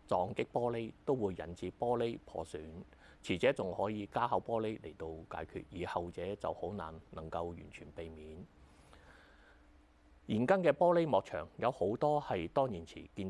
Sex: male